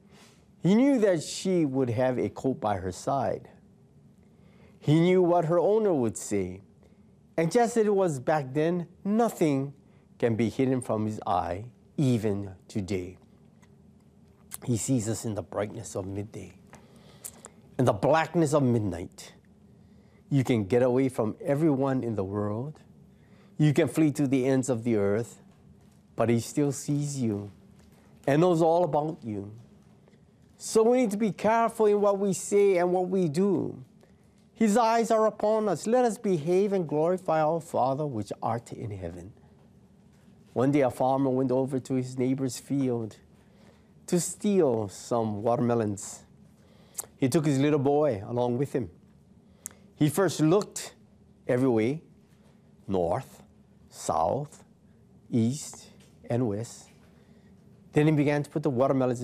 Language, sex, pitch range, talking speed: English, male, 115-170 Hz, 145 wpm